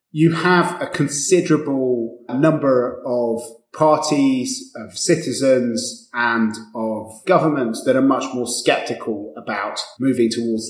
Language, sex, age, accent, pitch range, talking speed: English, male, 30-49, British, 115-150 Hz, 110 wpm